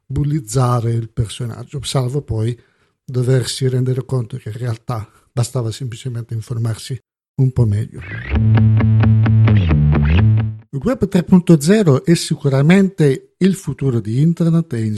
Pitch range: 120-155 Hz